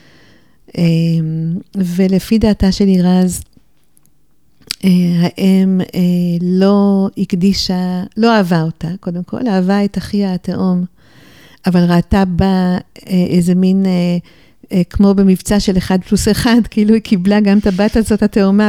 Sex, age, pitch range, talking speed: female, 50-69, 175-210 Hz, 130 wpm